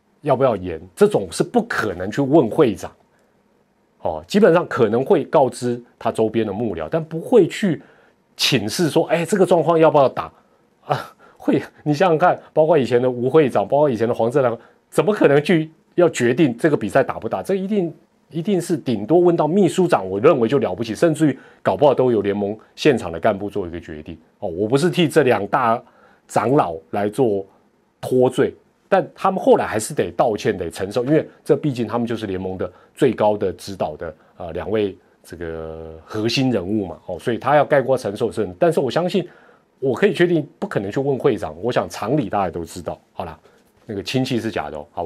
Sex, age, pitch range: male, 30-49, 100-160 Hz